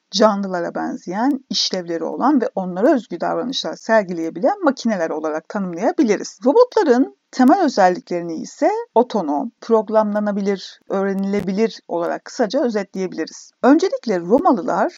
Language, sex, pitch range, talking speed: Turkish, female, 190-275 Hz, 95 wpm